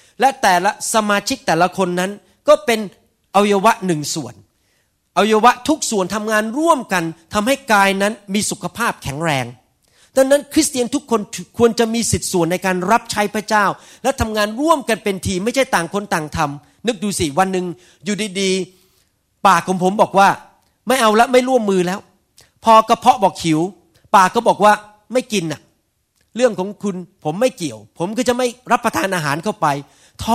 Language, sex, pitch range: Thai, male, 170-235 Hz